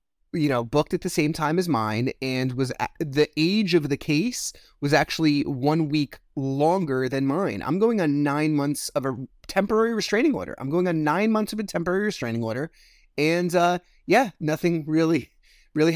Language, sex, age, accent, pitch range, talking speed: English, male, 30-49, American, 140-185 Hz, 185 wpm